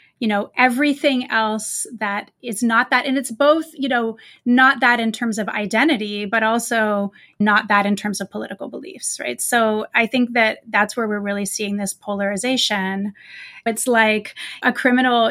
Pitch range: 210-250 Hz